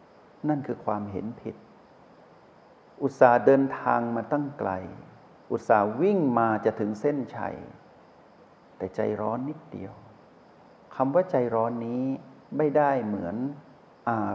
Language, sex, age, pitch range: Thai, male, 60-79, 110-155 Hz